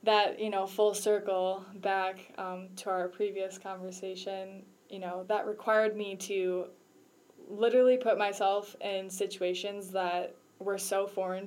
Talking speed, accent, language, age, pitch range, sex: 135 wpm, American, English, 10-29, 185-215 Hz, female